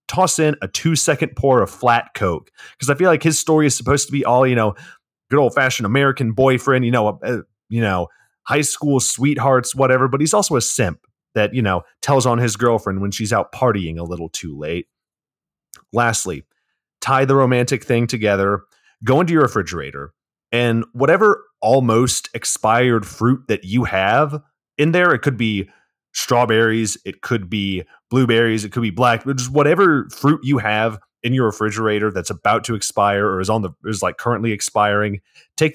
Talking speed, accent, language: 180 wpm, American, English